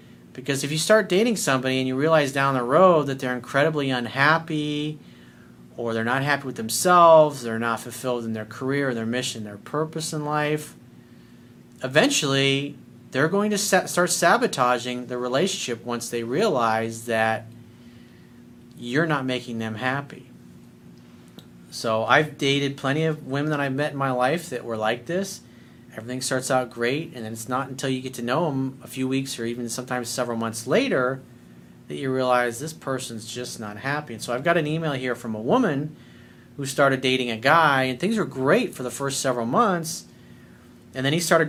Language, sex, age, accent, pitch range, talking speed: English, male, 40-59, American, 120-150 Hz, 180 wpm